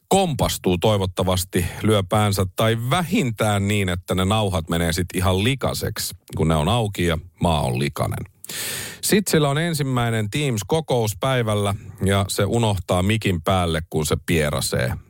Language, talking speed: Finnish, 140 wpm